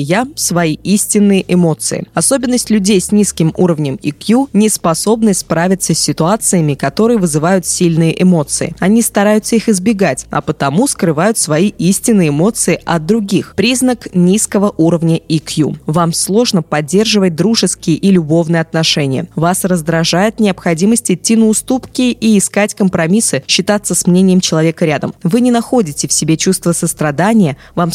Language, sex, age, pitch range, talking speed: Russian, female, 20-39, 165-215 Hz, 140 wpm